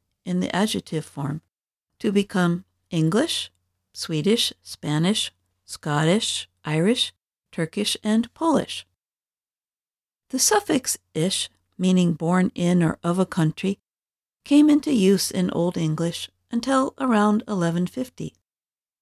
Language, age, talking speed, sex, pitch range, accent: English, 50-69, 105 wpm, female, 160-230 Hz, American